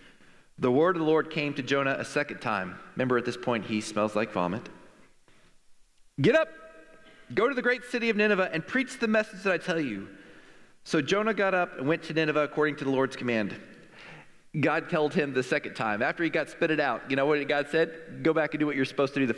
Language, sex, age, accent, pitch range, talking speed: English, male, 40-59, American, 150-245 Hz, 235 wpm